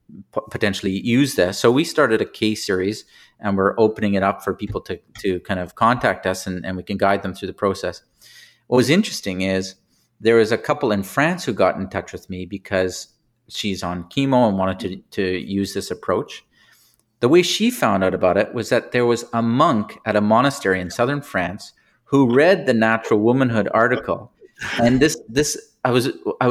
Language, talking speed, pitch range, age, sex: English, 200 wpm, 100-130 Hz, 40-59, male